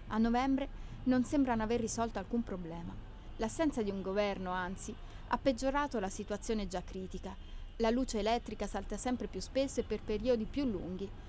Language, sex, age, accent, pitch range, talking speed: Italian, female, 30-49, native, 185-240 Hz, 165 wpm